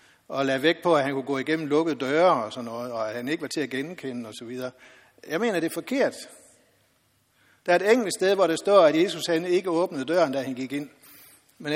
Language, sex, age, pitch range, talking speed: Danish, male, 60-79, 140-180 Hz, 250 wpm